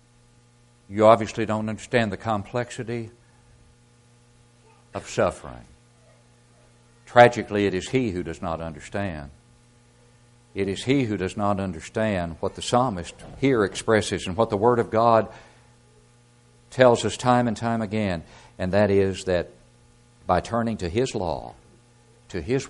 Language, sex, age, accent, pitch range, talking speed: English, male, 60-79, American, 80-120 Hz, 135 wpm